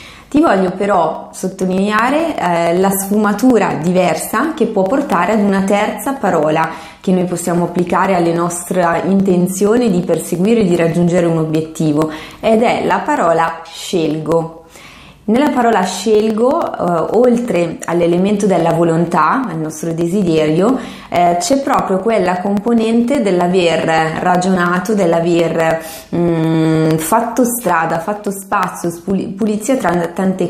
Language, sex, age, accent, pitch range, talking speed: Italian, female, 20-39, native, 170-225 Hz, 120 wpm